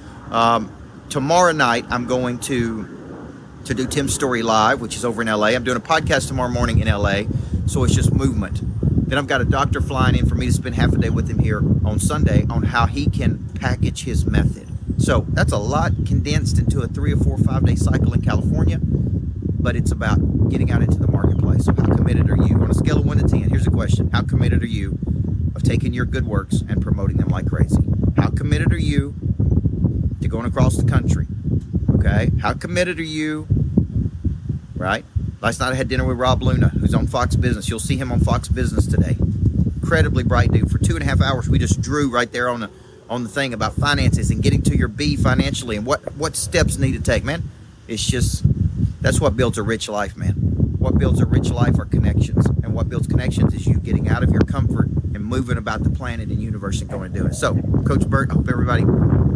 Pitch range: 95-125 Hz